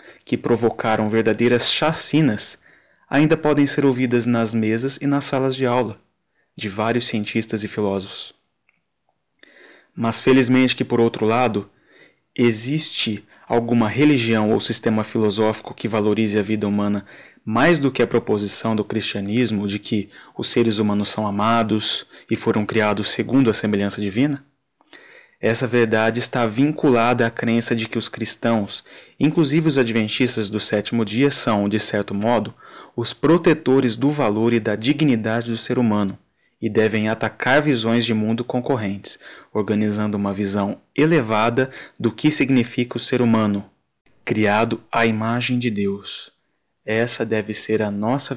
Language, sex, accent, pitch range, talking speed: Portuguese, male, Brazilian, 105-125 Hz, 145 wpm